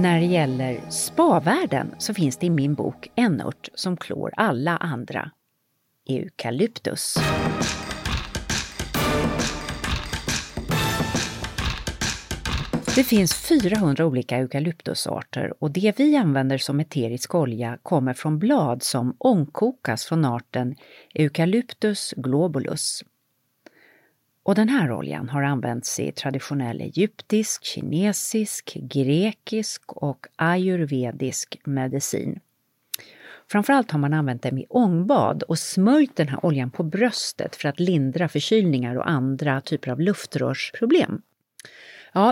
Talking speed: 110 wpm